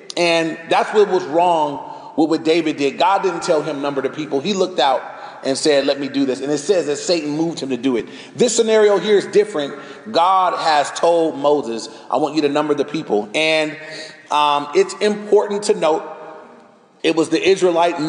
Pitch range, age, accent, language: 150-180 Hz, 30-49, American, English